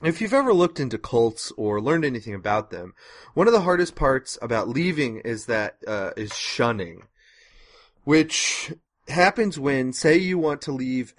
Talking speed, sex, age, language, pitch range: 165 wpm, male, 30-49, English, 110-145 Hz